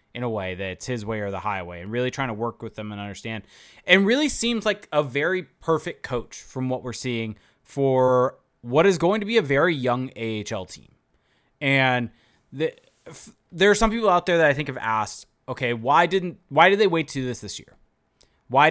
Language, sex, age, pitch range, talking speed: English, male, 20-39, 115-160 Hz, 215 wpm